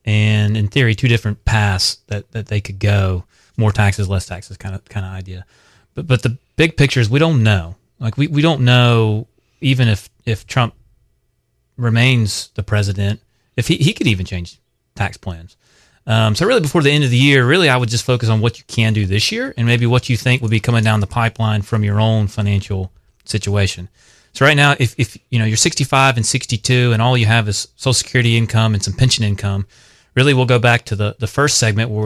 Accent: American